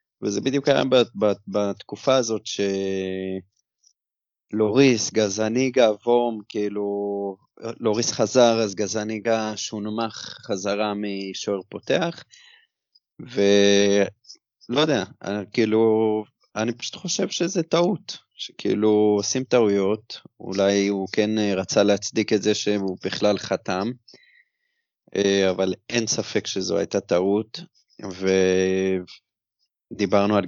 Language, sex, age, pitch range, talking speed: Hebrew, male, 30-49, 100-120 Hz, 95 wpm